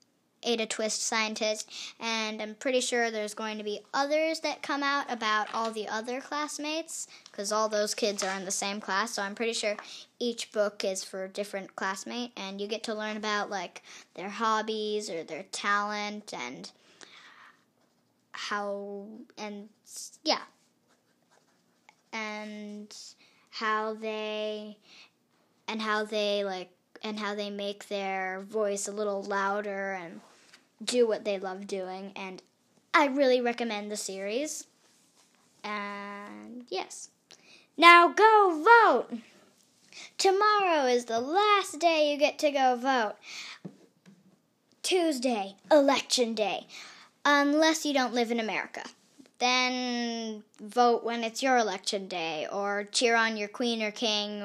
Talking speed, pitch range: 135 wpm, 205-245 Hz